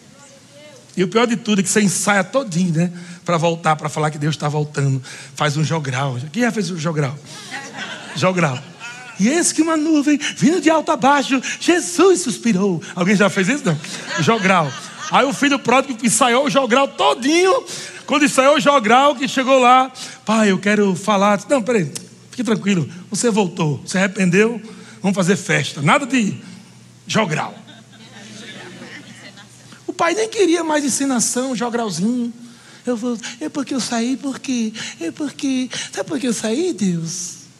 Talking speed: 160 wpm